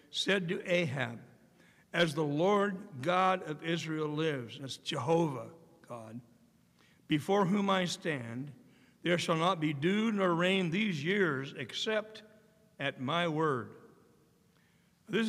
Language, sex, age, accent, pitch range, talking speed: English, male, 60-79, American, 145-190 Hz, 120 wpm